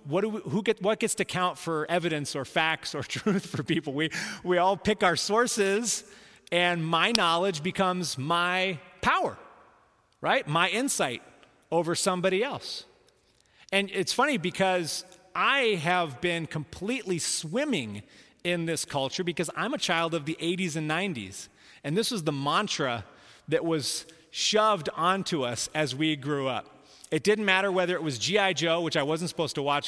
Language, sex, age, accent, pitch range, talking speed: English, male, 30-49, American, 150-190 Hz, 170 wpm